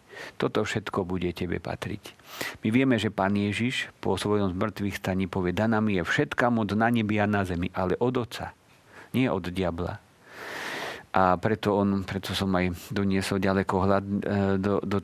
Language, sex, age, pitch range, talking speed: Slovak, male, 50-69, 95-105 Hz, 160 wpm